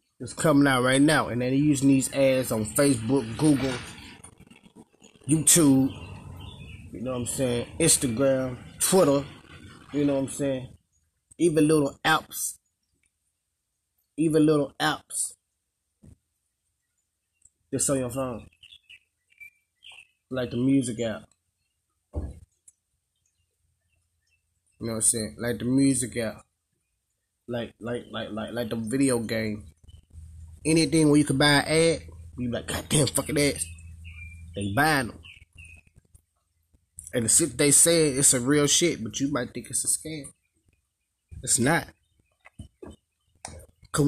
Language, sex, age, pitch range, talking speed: English, male, 20-39, 90-140 Hz, 125 wpm